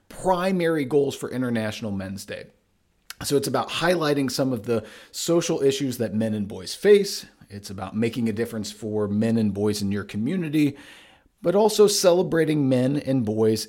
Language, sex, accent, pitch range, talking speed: English, male, American, 110-150 Hz, 165 wpm